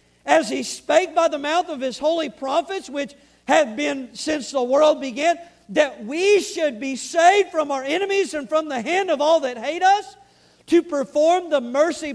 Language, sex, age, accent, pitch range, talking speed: English, male, 50-69, American, 255-330 Hz, 190 wpm